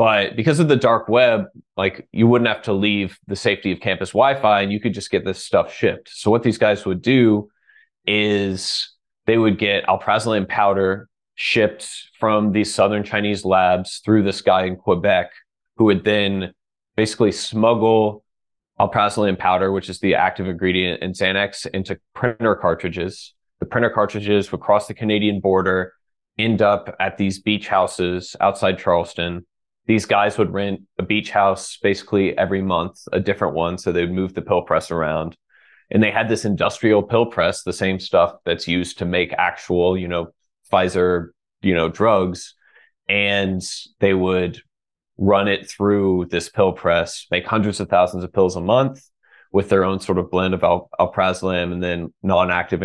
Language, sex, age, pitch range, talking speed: English, male, 20-39, 90-105 Hz, 170 wpm